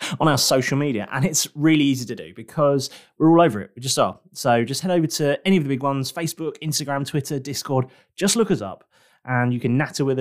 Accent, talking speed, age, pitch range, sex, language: British, 240 wpm, 20-39, 120-165 Hz, male, English